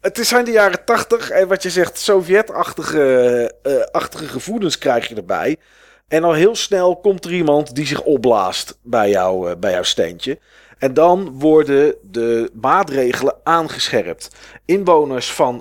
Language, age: Dutch, 40-59